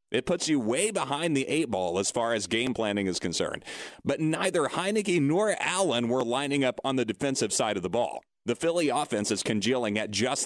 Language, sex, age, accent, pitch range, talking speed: English, male, 30-49, American, 115-145 Hz, 210 wpm